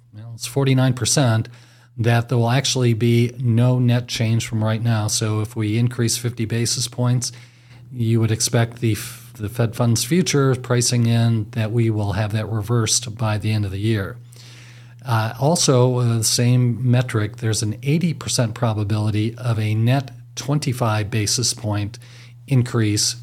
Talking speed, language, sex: 150 wpm, English, male